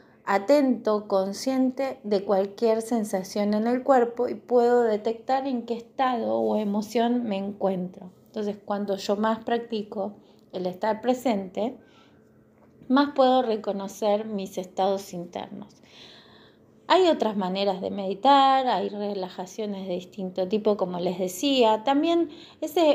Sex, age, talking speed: female, 20-39, 125 wpm